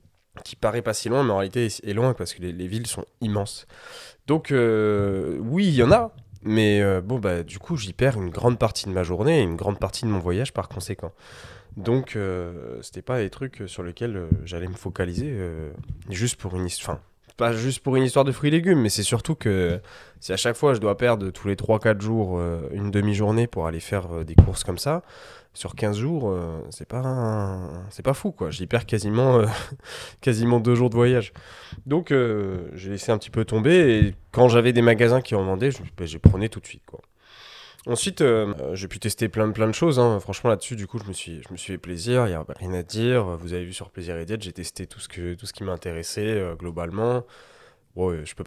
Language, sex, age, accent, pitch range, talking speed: French, male, 20-39, French, 95-125 Hz, 235 wpm